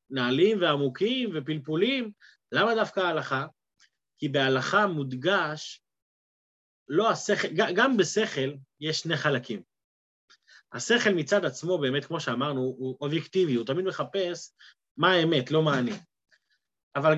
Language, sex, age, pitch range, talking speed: Hebrew, male, 30-49, 155-220 Hz, 115 wpm